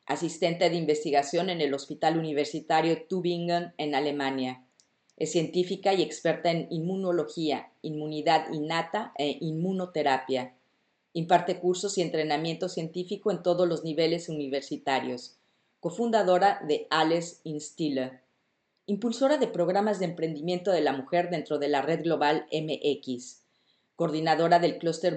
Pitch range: 150-180 Hz